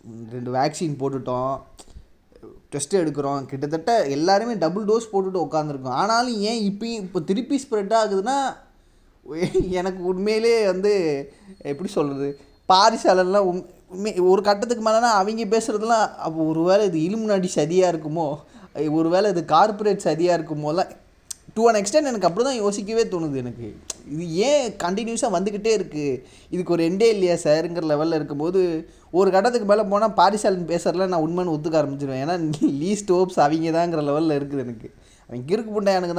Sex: male